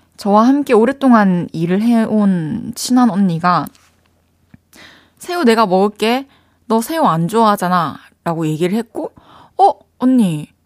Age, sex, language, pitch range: 20-39, female, Korean, 170-235 Hz